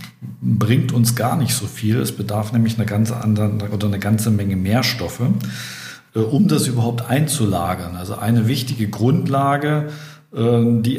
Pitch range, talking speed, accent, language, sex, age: 105-125 Hz, 145 wpm, German, German, male, 50-69